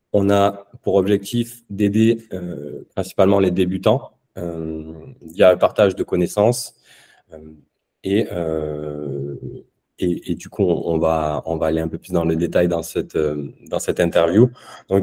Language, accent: French, French